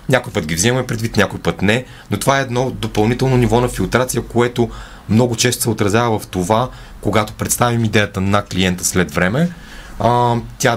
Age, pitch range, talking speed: 30-49, 95-125 Hz, 175 wpm